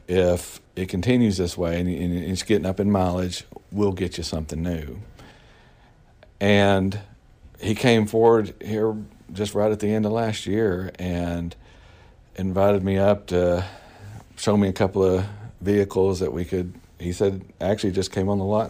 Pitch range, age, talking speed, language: 85-100 Hz, 50-69, 165 wpm, English